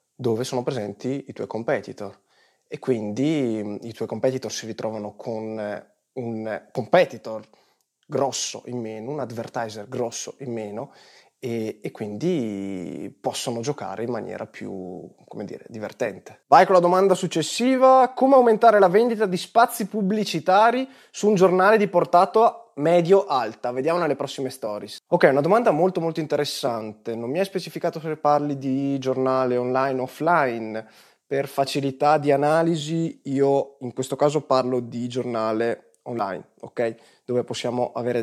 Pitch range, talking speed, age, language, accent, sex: 115-165 Hz, 145 wpm, 20-39, Italian, native, male